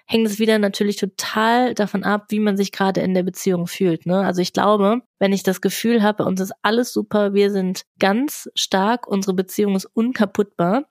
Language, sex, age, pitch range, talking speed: German, female, 20-39, 190-215 Hz, 200 wpm